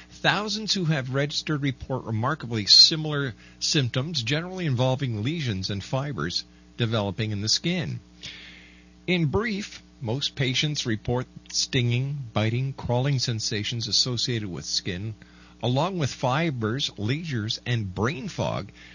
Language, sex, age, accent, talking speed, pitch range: English, male, 50-69, American, 115 wpm, 95-135 Hz